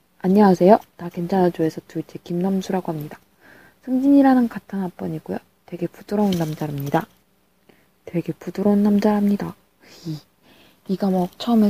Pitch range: 175-220 Hz